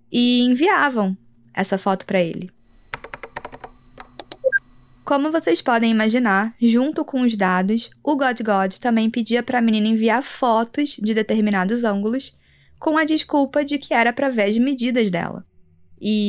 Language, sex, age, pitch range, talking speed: Portuguese, female, 20-39, 195-250 Hz, 145 wpm